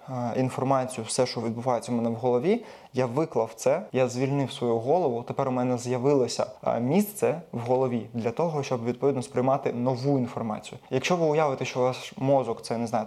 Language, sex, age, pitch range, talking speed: Ukrainian, male, 20-39, 120-145 Hz, 180 wpm